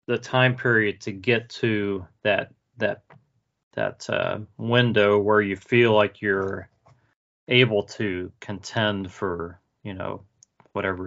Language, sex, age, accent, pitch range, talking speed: English, male, 30-49, American, 100-115 Hz, 125 wpm